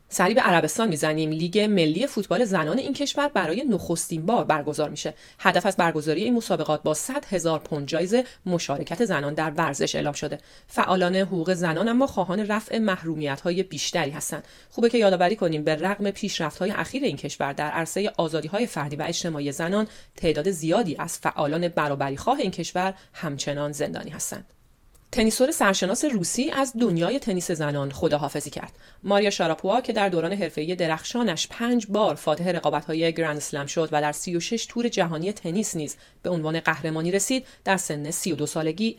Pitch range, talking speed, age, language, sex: 155-210 Hz, 160 wpm, 30-49, Persian, female